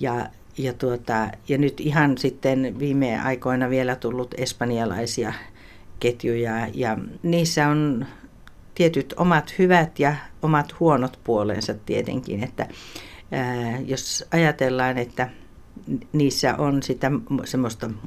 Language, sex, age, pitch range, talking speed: Finnish, female, 60-79, 115-140 Hz, 100 wpm